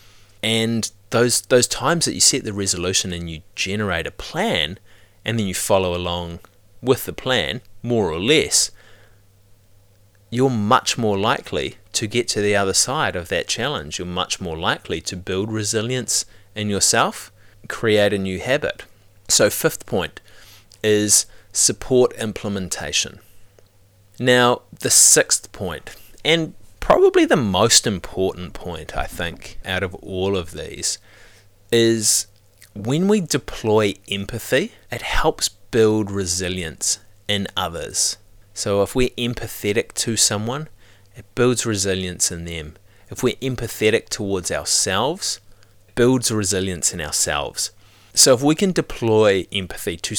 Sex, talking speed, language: male, 135 wpm, English